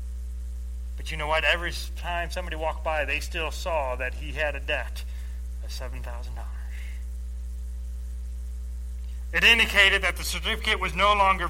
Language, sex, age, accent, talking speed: English, male, 30-49, American, 140 wpm